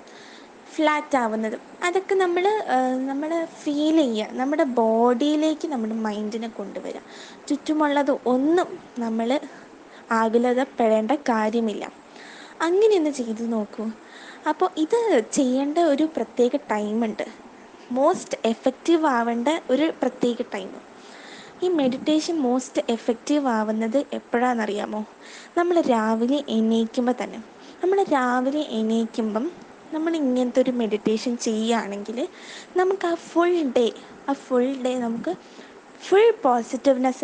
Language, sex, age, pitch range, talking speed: Malayalam, female, 20-39, 235-310 Hz, 95 wpm